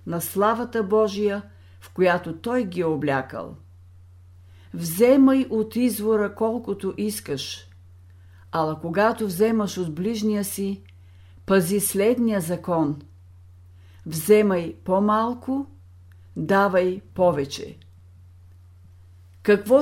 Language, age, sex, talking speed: Bulgarian, 50-69, female, 80 wpm